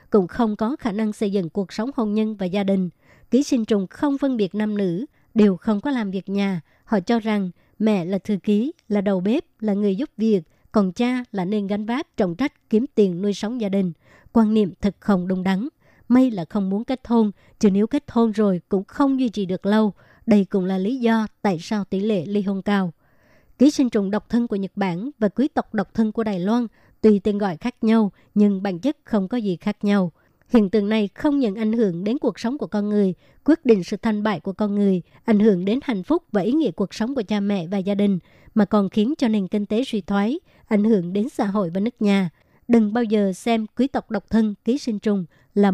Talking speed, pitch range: 245 wpm, 200-230 Hz